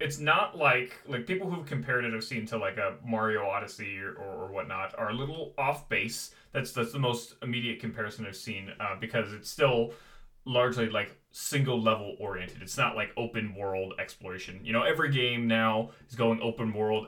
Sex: male